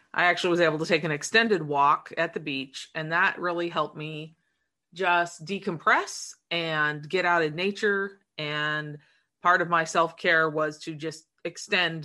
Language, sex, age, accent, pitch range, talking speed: English, female, 30-49, American, 155-185 Hz, 165 wpm